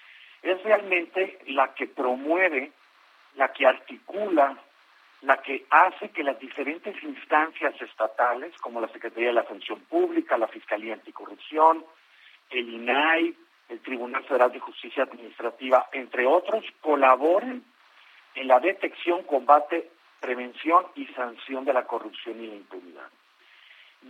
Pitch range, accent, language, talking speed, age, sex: 130-180 Hz, Mexican, Spanish, 125 wpm, 50-69, male